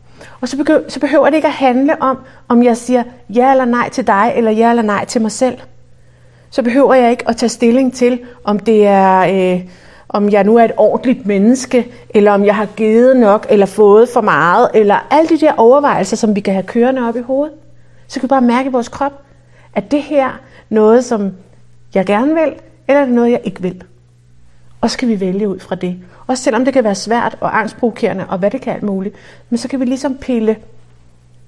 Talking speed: 225 wpm